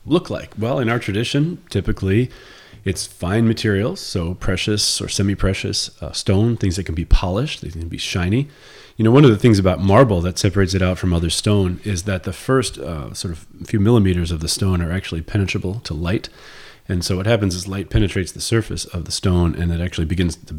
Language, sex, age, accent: English, male, 30-49, American